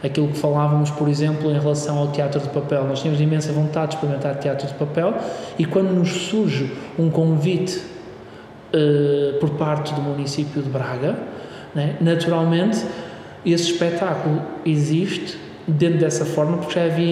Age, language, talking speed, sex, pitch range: 20-39, Portuguese, 155 wpm, male, 150-180 Hz